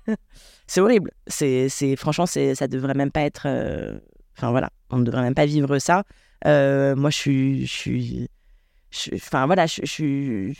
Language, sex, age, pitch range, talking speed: French, female, 20-39, 140-175 Hz, 195 wpm